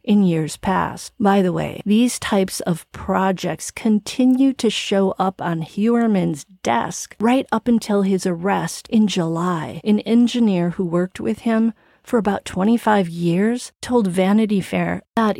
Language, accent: English, American